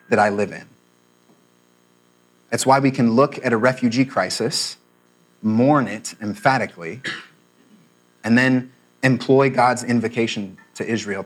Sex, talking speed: male, 125 wpm